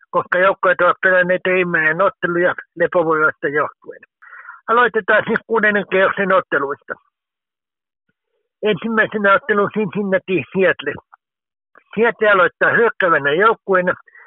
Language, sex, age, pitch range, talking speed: Finnish, male, 60-79, 175-220 Hz, 95 wpm